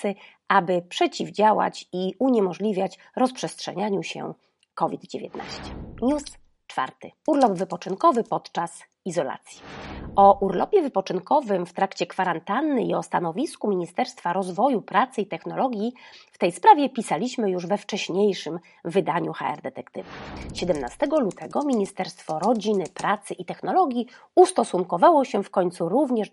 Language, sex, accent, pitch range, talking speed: Polish, female, native, 180-265 Hz, 110 wpm